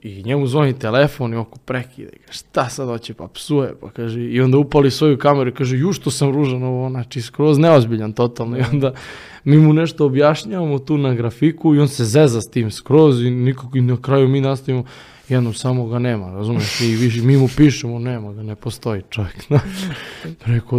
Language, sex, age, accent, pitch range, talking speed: Croatian, male, 20-39, Serbian, 110-135 Hz, 205 wpm